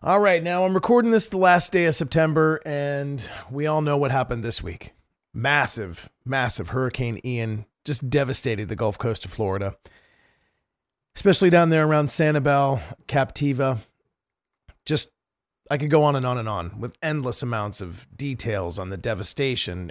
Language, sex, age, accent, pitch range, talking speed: English, male, 40-59, American, 115-155 Hz, 160 wpm